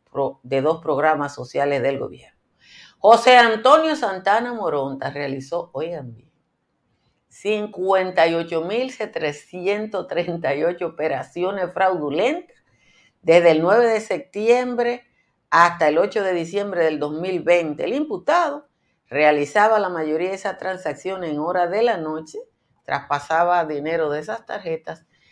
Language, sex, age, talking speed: Spanish, female, 50-69, 110 wpm